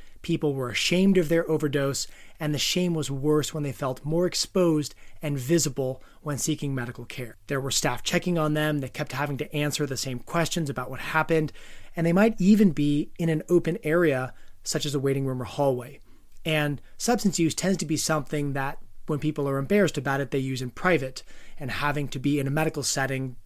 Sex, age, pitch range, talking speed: male, 20-39, 130-155 Hz, 205 wpm